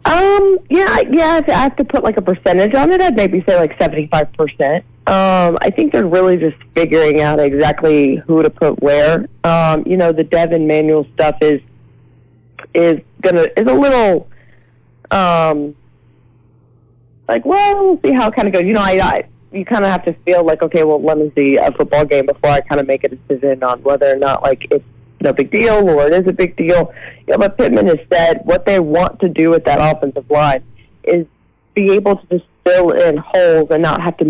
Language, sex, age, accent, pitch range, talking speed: English, female, 30-49, American, 145-185 Hz, 210 wpm